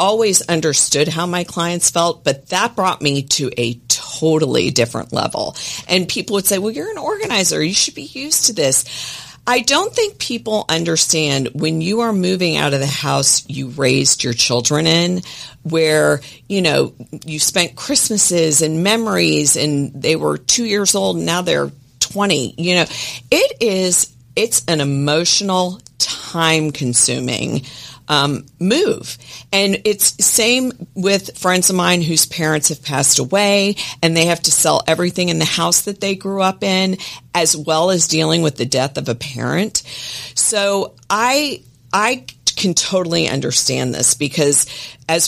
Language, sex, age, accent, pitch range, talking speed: English, female, 40-59, American, 140-195 Hz, 160 wpm